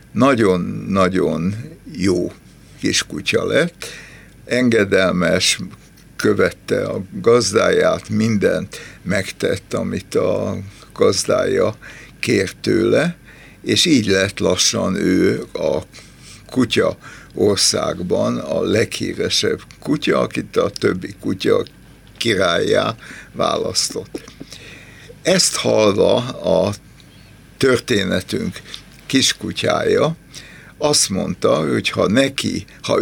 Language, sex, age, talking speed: Hungarian, male, 60-79, 80 wpm